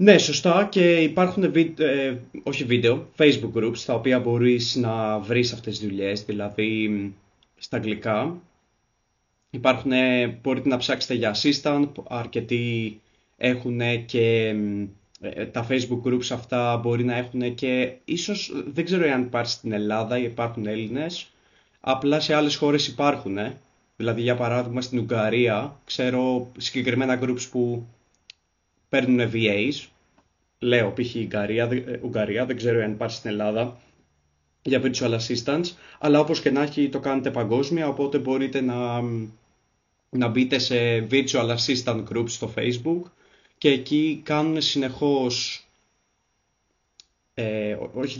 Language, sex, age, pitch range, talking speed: Greek, male, 20-39, 115-140 Hz, 125 wpm